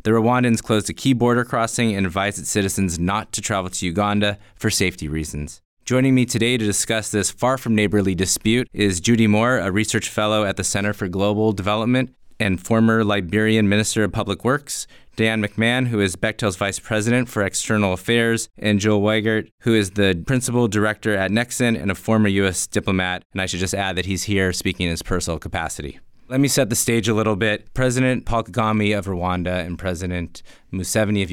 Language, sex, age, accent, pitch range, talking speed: English, male, 20-39, American, 90-110 Hz, 195 wpm